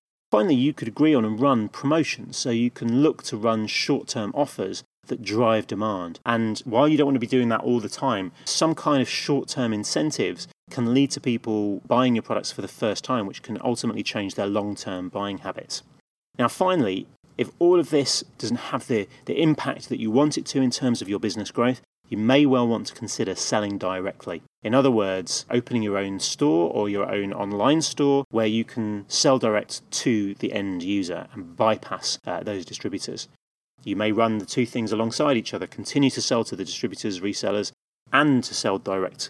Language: English